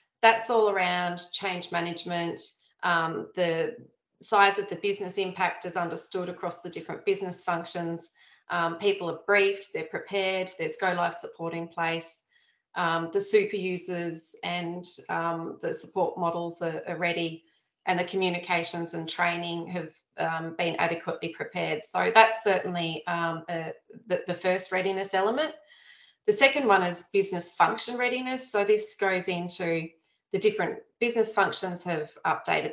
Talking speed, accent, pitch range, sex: 145 wpm, Australian, 170-200 Hz, female